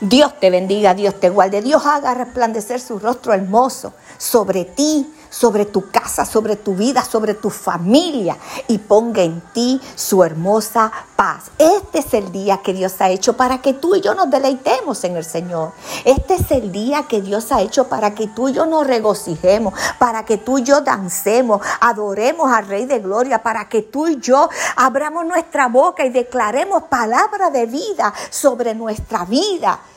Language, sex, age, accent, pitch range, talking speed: Spanish, female, 50-69, American, 205-275 Hz, 180 wpm